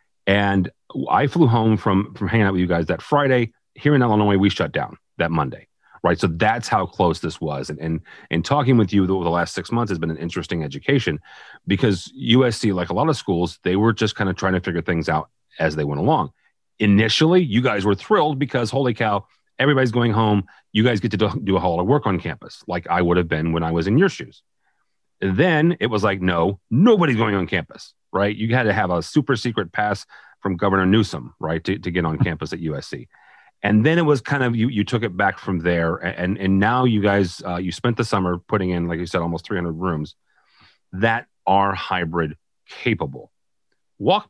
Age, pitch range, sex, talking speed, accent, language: 40-59, 90-115 Hz, male, 220 wpm, American, English